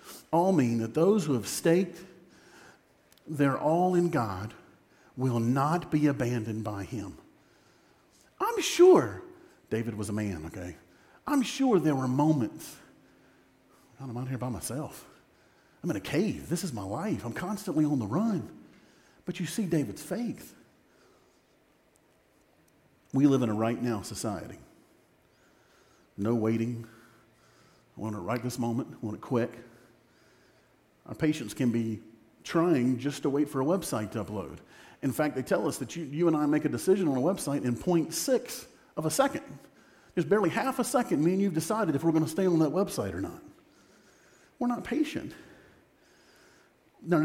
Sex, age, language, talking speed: male, 50-69, English, 165 wpm